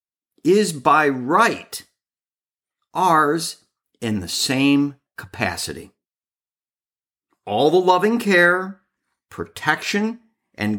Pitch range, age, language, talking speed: 130-215 Hz, 50-69, English, 80 wpm